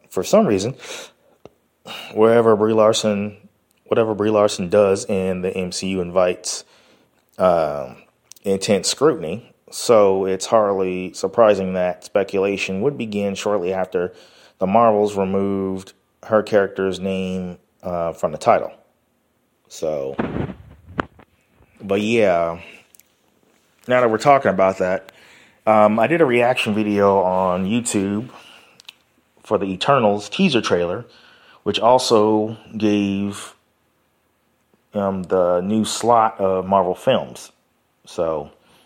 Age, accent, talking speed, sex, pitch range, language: 30-49, American, 110 wpm, male, 95-110 Hz, English